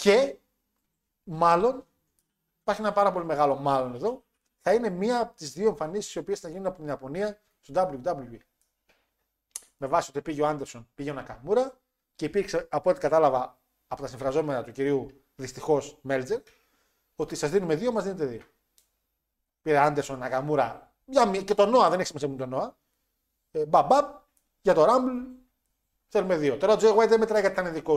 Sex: male